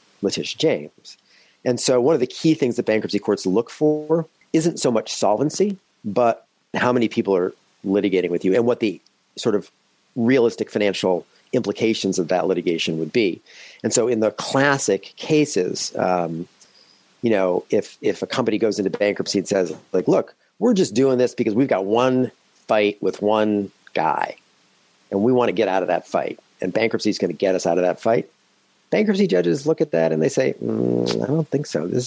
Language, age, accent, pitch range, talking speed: English, 50-69, American, 95-125 Hz, 195 wpm